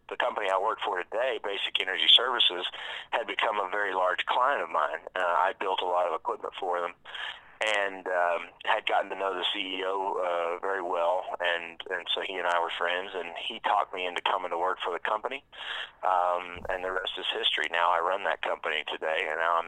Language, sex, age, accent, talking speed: English, male, 30-49, American, 215 wpm